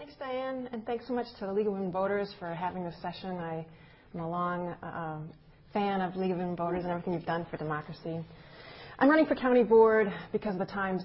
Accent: American